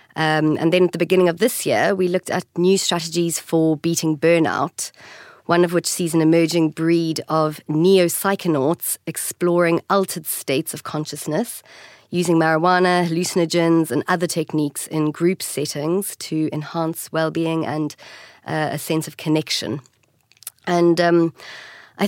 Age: 30-49